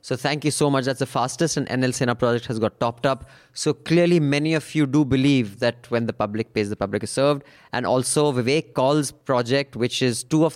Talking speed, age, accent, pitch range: 235 wpm, 20-39, Indian, 115-135 Hz